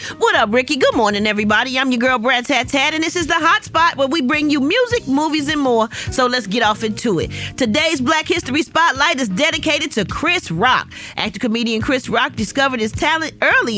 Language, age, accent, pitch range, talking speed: English, 40-59, American, 195-270 Hz, 205 wpm